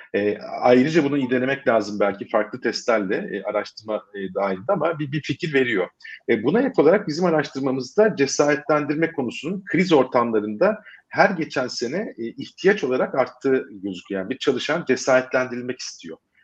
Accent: native